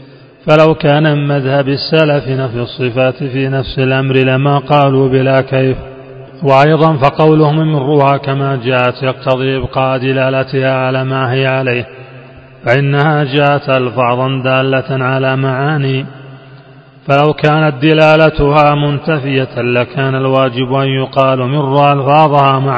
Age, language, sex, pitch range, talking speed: 30-49, Arabic, male, 130-145 Hz, 110 wpm